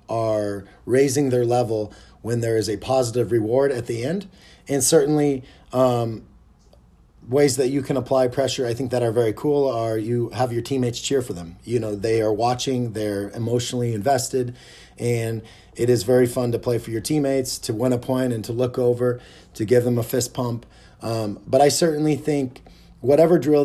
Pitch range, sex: 110-130 Hz, male